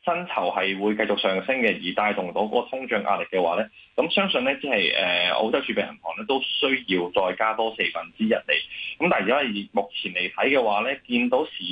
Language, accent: Chinese, native